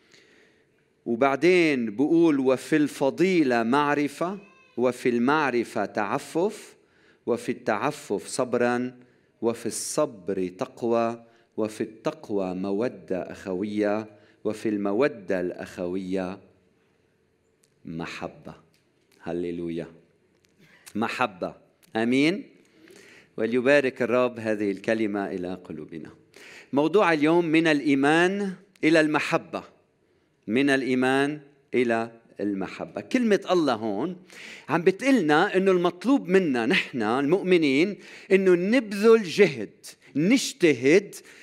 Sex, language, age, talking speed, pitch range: male, Arabic, 50-69, 80 wpm, 110-180 Hz